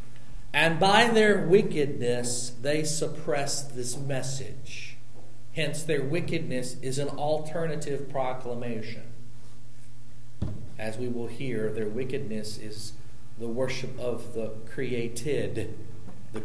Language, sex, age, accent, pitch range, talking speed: English, male, 40-59, American, 120-150 Hz, 100 wpm